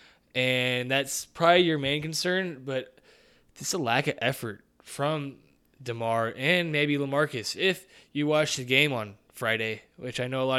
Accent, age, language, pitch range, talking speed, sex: American, 20-39, English, 115-145 Hz, 165 wpm, male